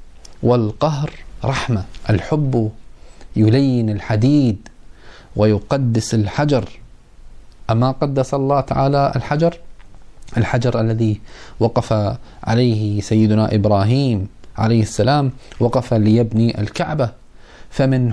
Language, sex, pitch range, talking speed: Arabic, male, 110-145 Hz, 80 wpm